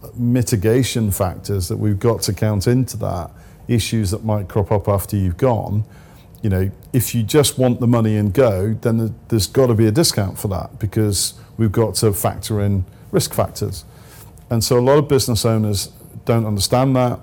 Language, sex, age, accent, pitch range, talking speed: English, male, 40-59, British, 105-120 Hz, 190 wpm